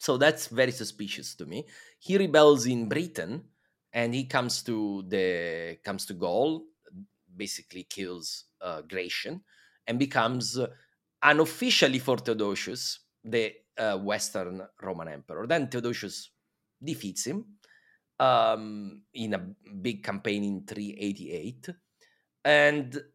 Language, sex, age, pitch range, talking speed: Italian, male, 30-49, 105-145 Hz, 115 wpm